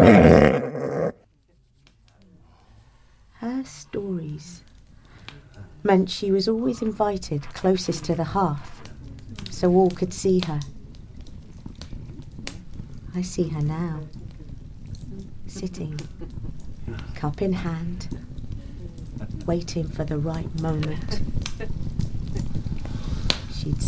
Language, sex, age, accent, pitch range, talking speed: English, female, 40-59, British, 125-175 Hz, 75 wpm